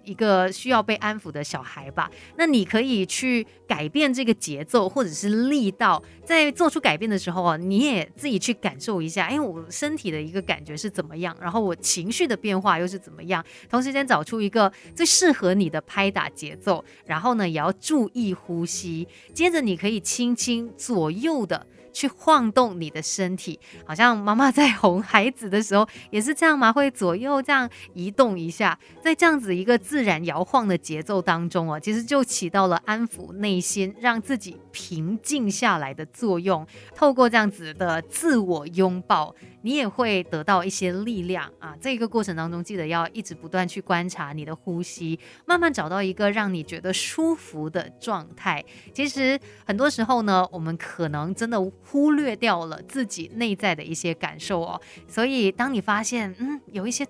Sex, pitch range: female, 175-240 Hz